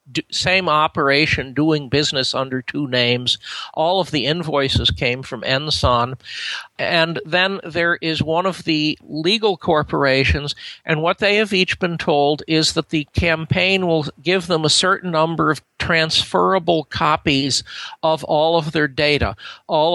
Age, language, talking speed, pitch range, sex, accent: 50-69, English, 145 wpm, 145-170 Hz, male, American